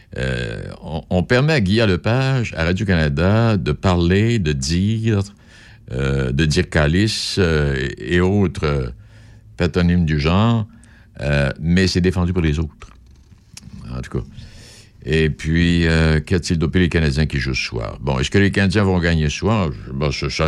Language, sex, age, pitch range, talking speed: French, male, 60-79, 75-110 Hz, 175 wpm